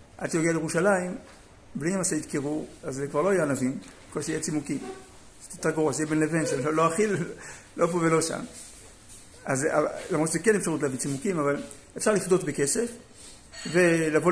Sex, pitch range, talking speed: male, 145-210 Hz, 160 wpm